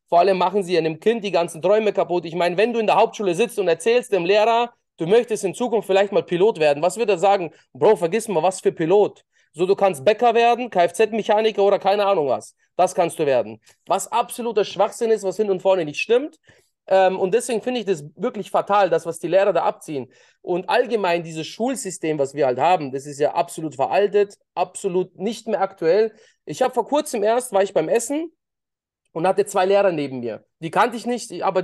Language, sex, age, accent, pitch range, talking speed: German, male, 30-49, German, 170-220 Hz, 220 wpm